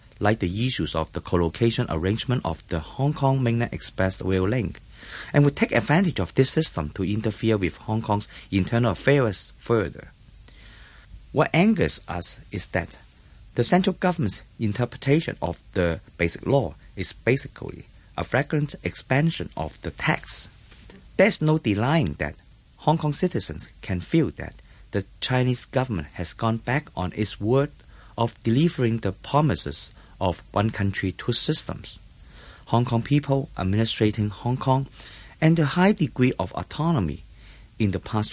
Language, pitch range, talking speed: English, 95-135 Hz, 145 wpm